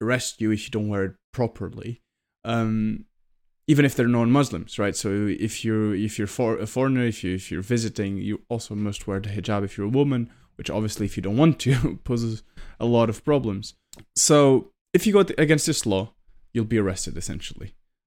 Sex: male